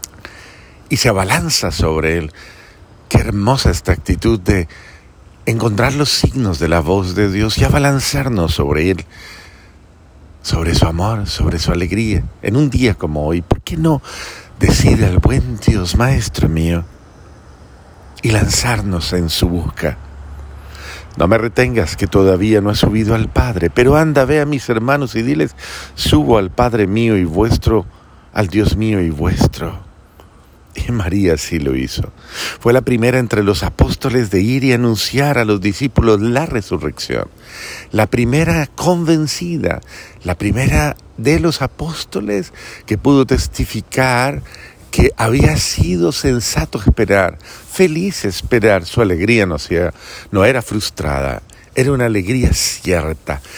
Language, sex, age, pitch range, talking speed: Spanish, male, 50-69, 85-120 Hz, 140 wpm